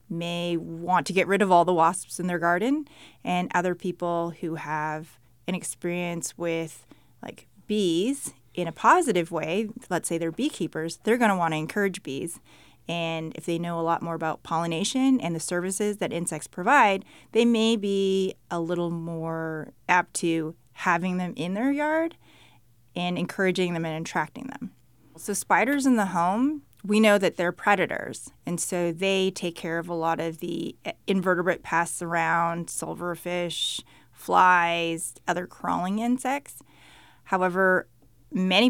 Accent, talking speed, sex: American, 155 wpm, female